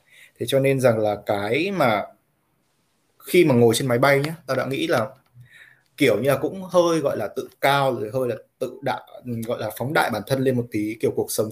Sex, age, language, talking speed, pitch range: male, 20-39, Vietnamese, 230 wpm, 115-140 Hz